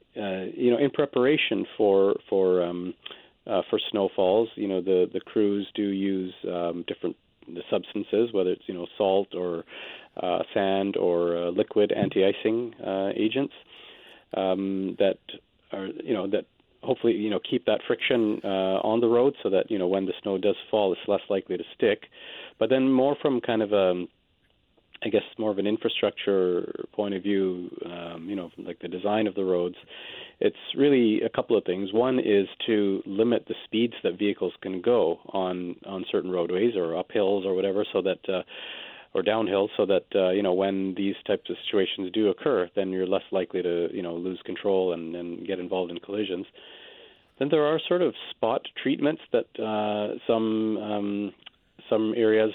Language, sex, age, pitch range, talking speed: English, male, 40-59, 95-110 Hz, 180 wpm